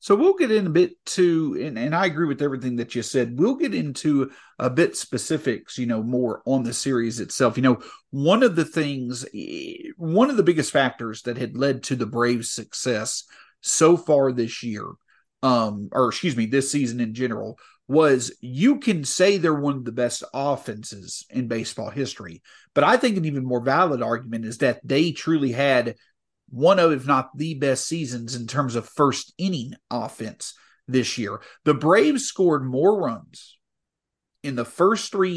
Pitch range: 125-175 Hz